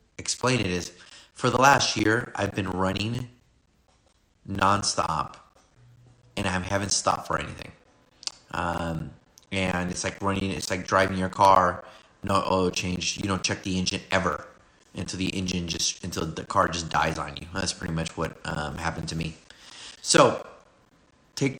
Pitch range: 90-105 Hz